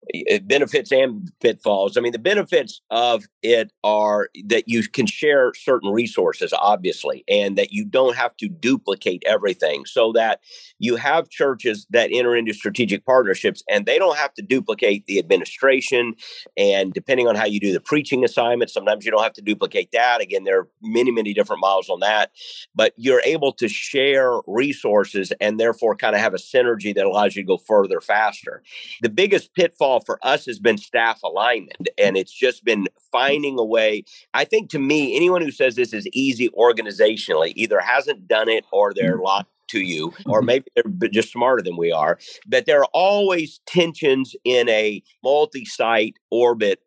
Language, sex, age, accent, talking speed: English, male, 50-69, American, 180 wpm